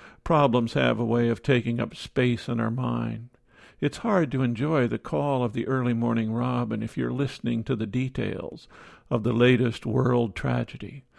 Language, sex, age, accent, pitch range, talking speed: English, male, 50-69, American, 115-135 Hz, 175 wpm